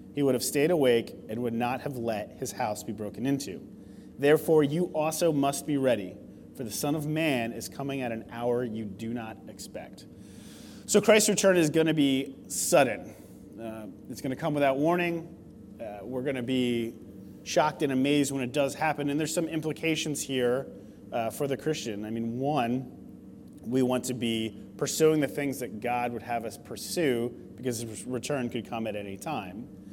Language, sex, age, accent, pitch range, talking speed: English, male, 30-49, American, 110-140 Hz, 190 wpm